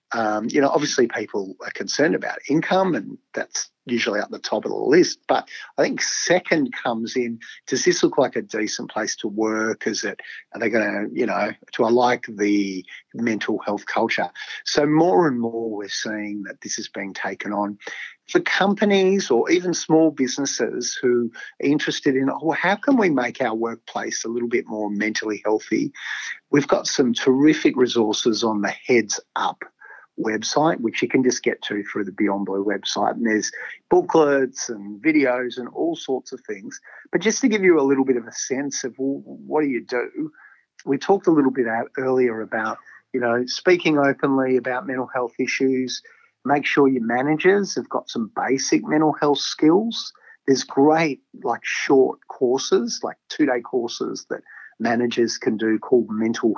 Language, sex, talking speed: English, male, 180 wpm